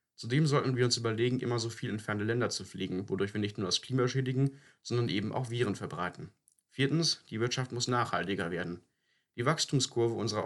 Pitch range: 105-130 Hz